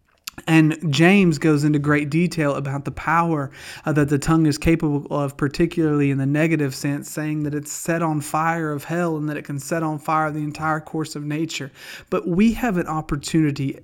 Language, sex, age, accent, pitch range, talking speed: English, male, 30-49, American, 140-160 Hz, 200 wpm